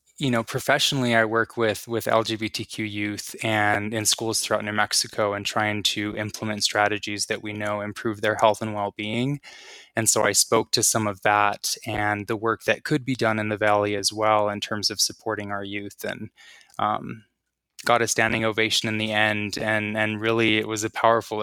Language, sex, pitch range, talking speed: English, male, 105-115 Hz, 195 wpm